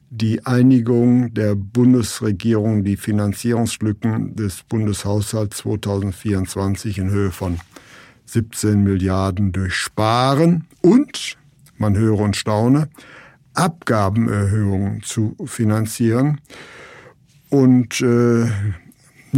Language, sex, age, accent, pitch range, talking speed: German, male, 60-79, German, 105-125 Hz, 75 wpm